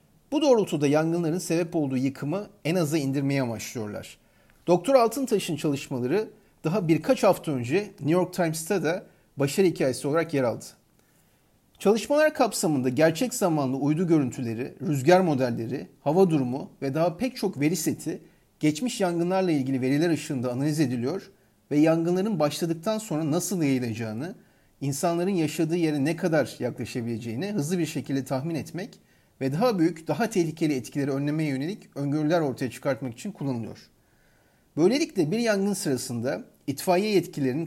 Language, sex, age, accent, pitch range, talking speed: Turkish, male, 40-59, native, 135-180 Hz, 135 wpm